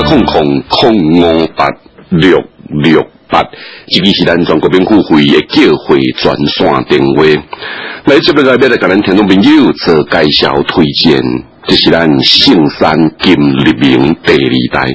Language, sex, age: Chinese, male, 60-79